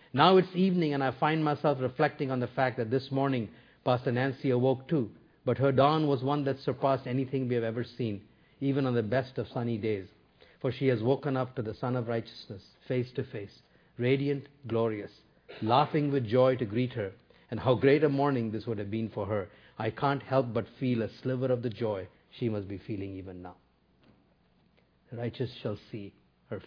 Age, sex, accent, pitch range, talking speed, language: 50-69, male, Indian, 115-140 Hz, 205 wpm, English